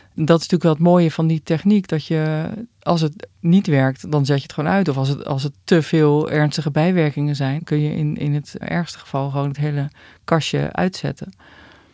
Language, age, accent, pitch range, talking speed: Dutch, 40-59, Dutch, 145-180 Hz, 210 wpm